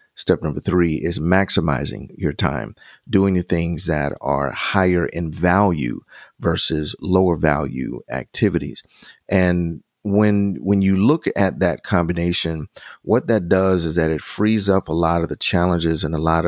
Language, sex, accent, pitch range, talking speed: English, male, American, 80-95 Hz, 155 wpm